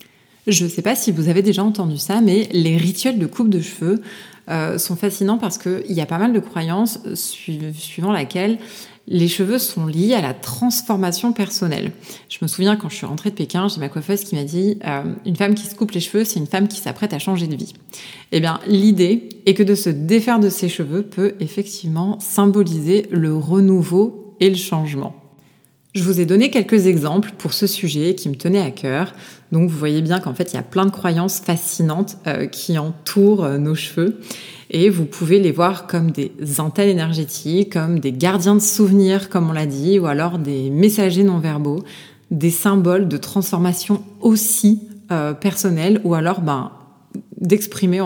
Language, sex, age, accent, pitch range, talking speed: French, female, 30-49, French, 165-205 Hz, 195 wpm